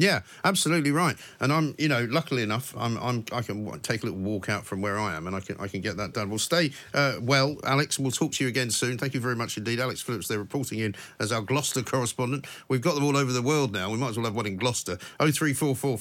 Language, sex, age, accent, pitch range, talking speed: English, male, 50-69, British, 115-140 Hz, 285 wpm